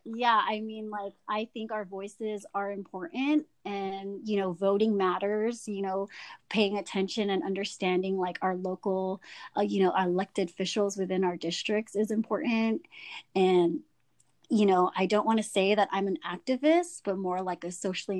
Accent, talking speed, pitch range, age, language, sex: American, 170 wpm, 180-205 Hz, 30-49, English, female